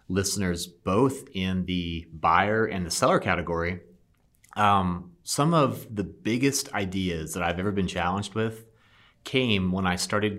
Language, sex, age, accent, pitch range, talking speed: English, male, 30-49, American, 90-110 Hz, 145 wpm